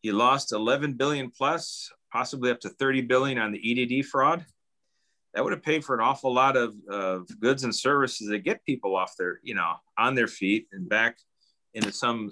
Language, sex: English, male